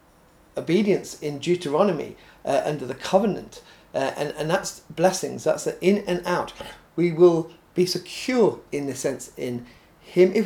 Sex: male